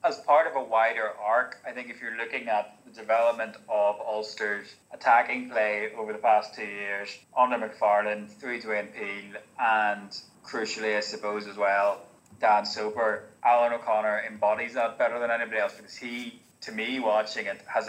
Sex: male